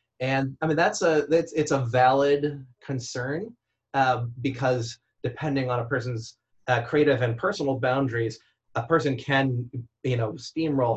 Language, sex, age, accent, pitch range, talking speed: English, male, 30-49, American, 115-135 Hz, 150 wpm